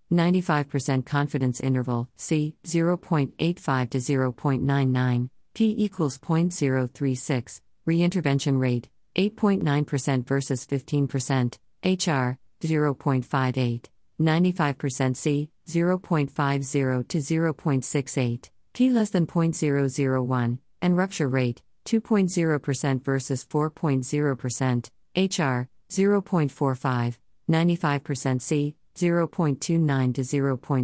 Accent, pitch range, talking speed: American, 130-165 Hz, 75 wpm